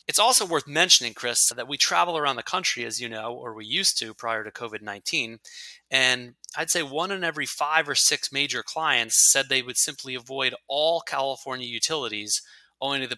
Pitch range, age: 125-150 Hz, 20-39